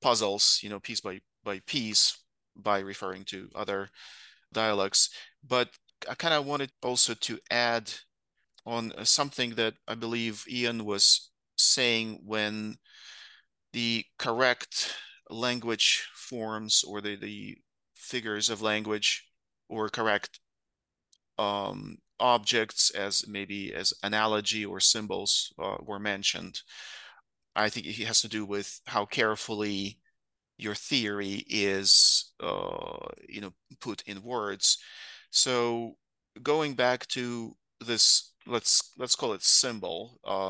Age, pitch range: 30-49, 100-120 Hz